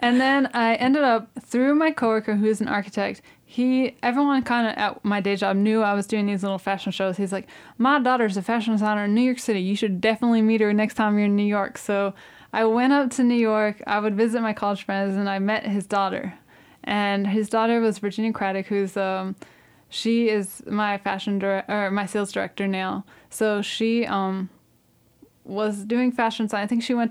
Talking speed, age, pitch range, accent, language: 215 wpm, 10-29, 200-230 Hz, American, English